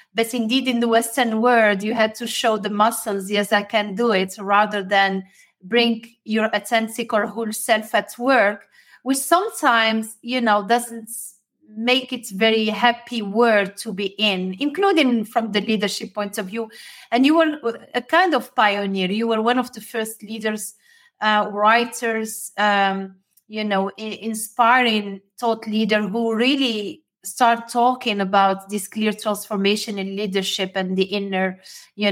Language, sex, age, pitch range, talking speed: English, female, 30-49, 200-235 Hz, 155 wpm